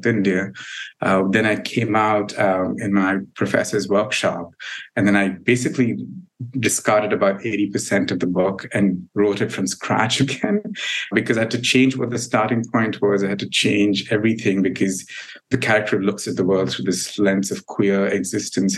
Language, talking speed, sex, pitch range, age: English, 175 wpm, male, 100-120 Hz, 50-69